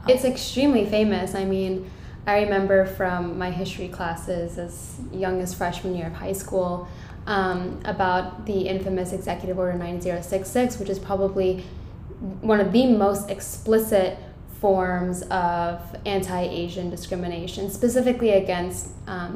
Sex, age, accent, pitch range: female, 10-29, American, 185-210 Hz